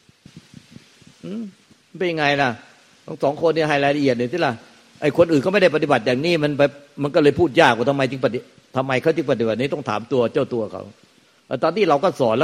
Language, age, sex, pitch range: Thai, 60-79, male, 120-150 Hz